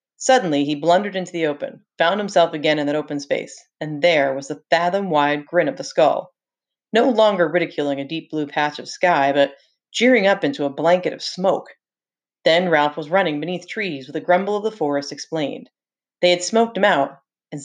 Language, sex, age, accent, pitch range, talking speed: English, female, 30-49, American, 150-210 Hz, 195 wpm